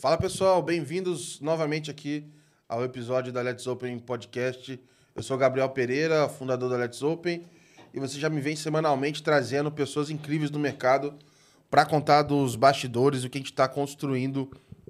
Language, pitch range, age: Portuguese, 130-155 Hz, 20-39